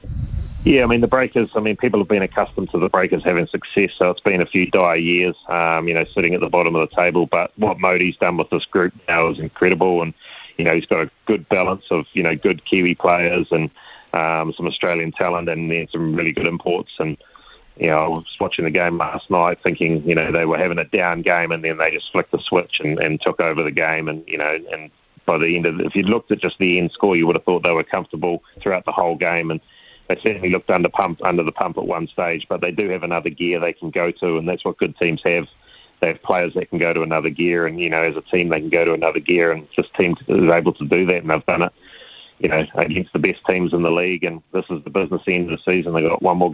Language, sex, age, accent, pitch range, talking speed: English, male, 30-49, Australian, 85-90 Hz, 270 wpm